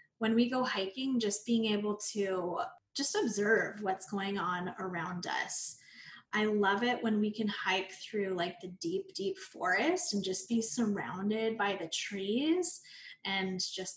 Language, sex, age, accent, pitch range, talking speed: English, female, 20-39, American, 195-240 Hz, 160 wpm